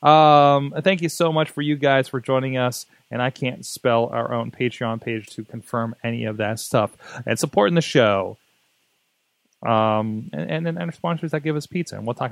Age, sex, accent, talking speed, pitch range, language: 30-49, male, American, 205 wpm, 140-200 Hz, English